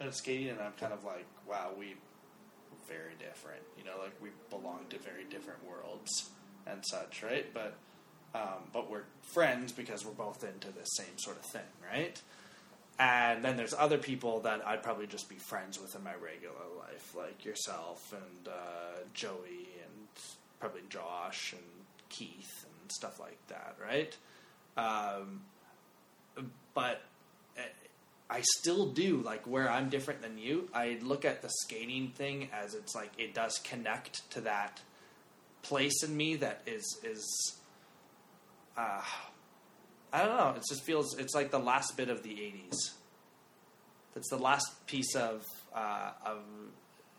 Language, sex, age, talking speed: English, male, 20-39, 155 wpm